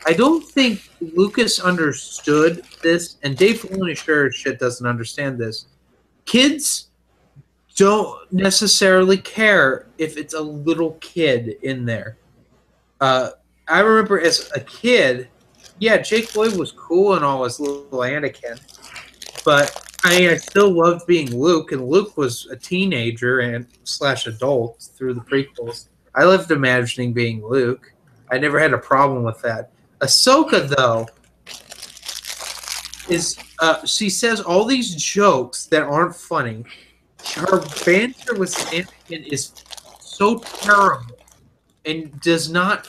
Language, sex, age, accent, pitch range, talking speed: English, male, 30-49, American, 135-195 Hz, 130 wpm